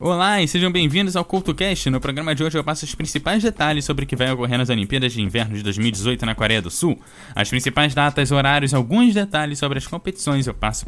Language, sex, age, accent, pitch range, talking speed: Portuguese, male, 10-29, Brazilian, 125-170 Hz, 230 wpm